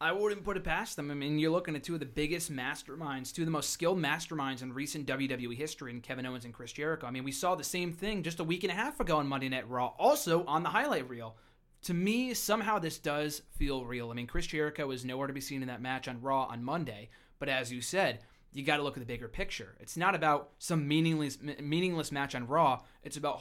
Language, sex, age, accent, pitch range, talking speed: English, male, 20-39, American, 130-160 Hz, 260 wpm